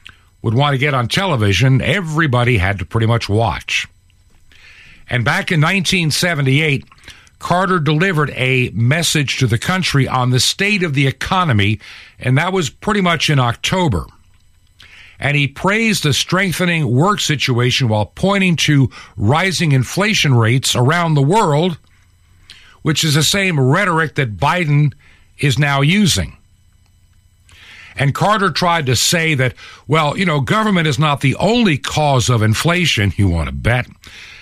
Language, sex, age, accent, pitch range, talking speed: English, male, 50-69, American, 95-155 Hz, 145 wpm